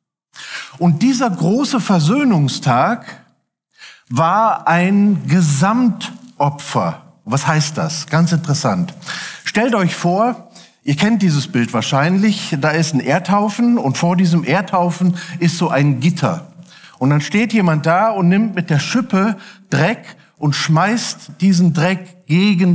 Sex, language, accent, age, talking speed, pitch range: male, German, German, 50-69, 125 wpm, 160-210 Hz